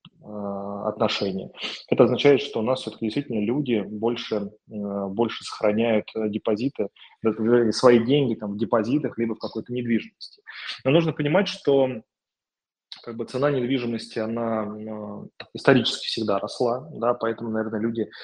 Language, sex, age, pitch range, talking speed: Russian, male, 20-39, 105-115 Hz, 125 wpm